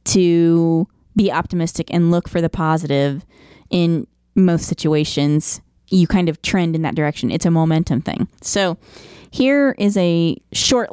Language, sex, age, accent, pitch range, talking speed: English, female, 30-49, American, 165-195 Hz, 150 wpm